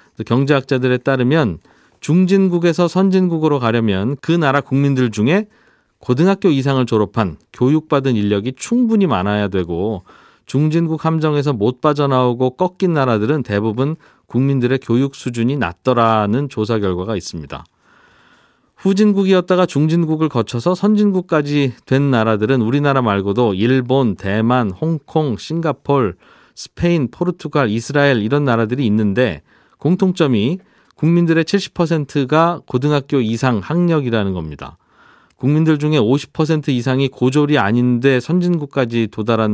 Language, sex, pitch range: Korean, male, 115-160 Hz